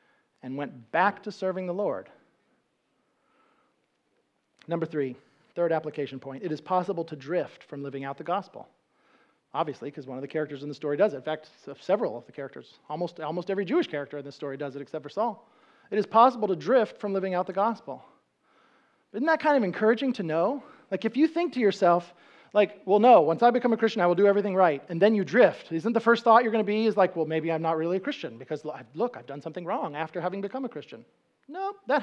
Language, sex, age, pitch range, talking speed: English, male, 40-59, 165-275 Hz, 230 wpm